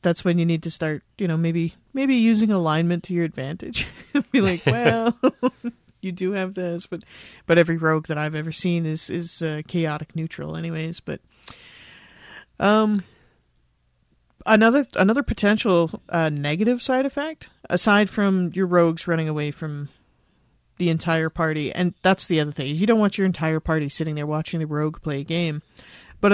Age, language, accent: 40-59, English, American